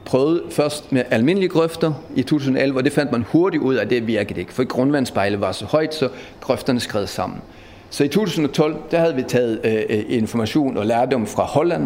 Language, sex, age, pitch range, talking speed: Danish, male, 40-59, 115-145 Hz, 205 wpm